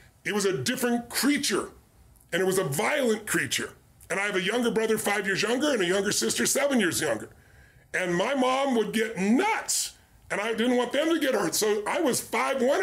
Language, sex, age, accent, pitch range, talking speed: English, female, 40-59, American, 185-235 Hz, 215 wpm